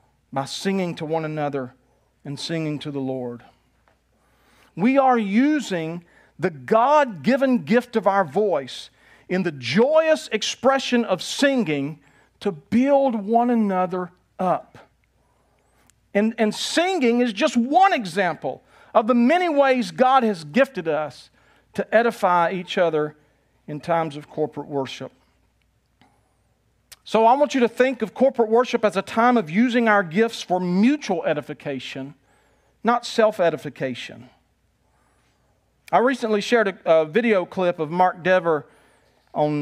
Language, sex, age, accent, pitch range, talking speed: English, male, 50-69, American, 150-225 Hz, 130 wpm